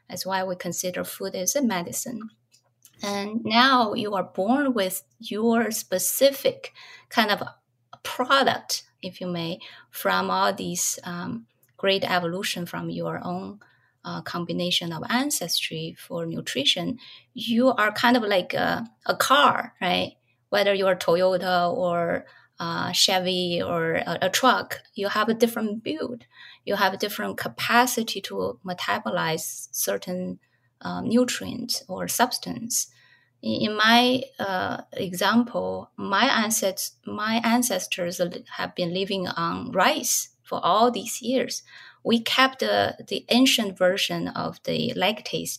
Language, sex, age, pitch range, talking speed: English, female, 20-39, 175-235 Hz, 130 wpm